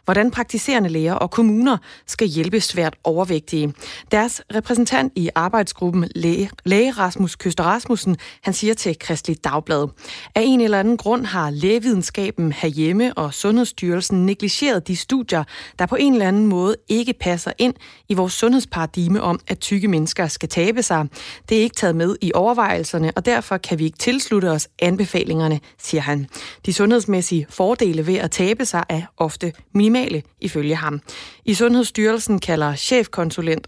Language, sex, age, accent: Danish, female, 30-49, native